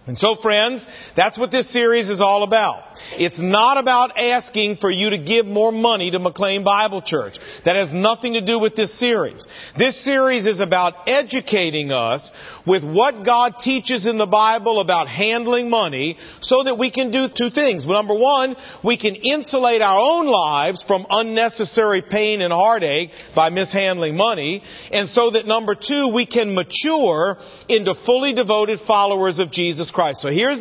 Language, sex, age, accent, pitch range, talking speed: English, male, 50-69, American, 195-255 Hz, 175 wpm